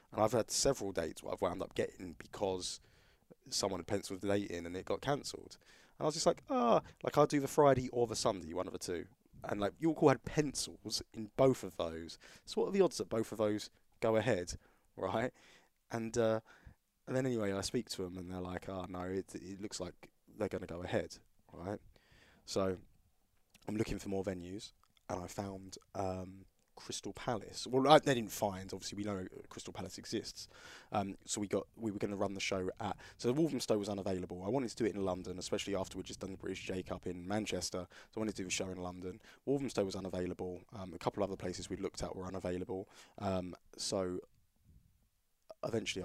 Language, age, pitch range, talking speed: English, 20-39, 95-110 Hz, 220 wpm